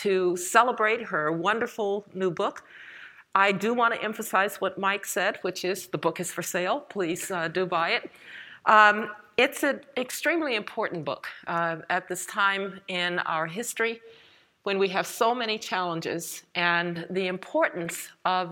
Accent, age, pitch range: American, 50-69, 170-215 Hz